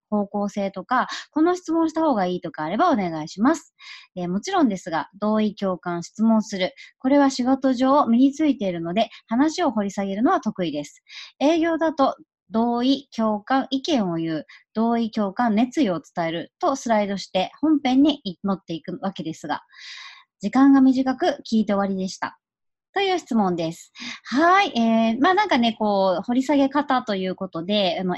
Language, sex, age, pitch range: Japanese, male, 30-49, 185-290 Hz